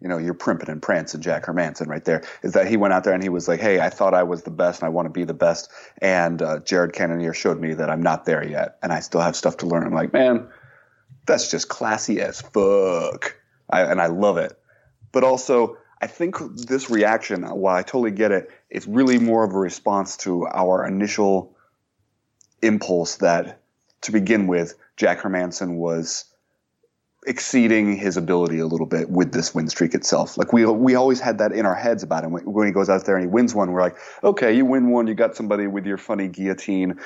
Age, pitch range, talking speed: 30-49, 90-115 Hz, 230 wpm